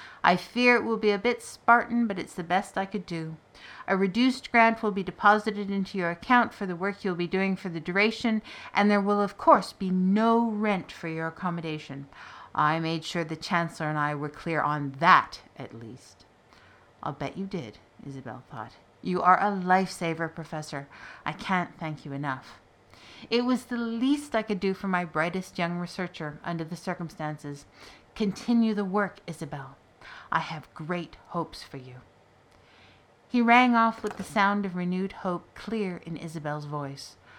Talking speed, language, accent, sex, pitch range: 180 wpm, English, American, female, 150-200 Hz